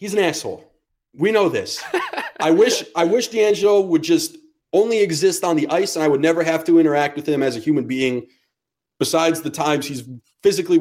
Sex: male